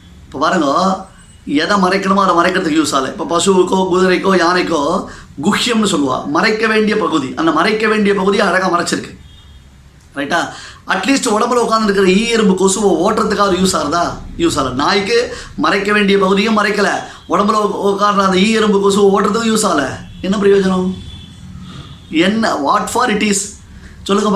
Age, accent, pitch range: 20-39, native, 165-205 Hz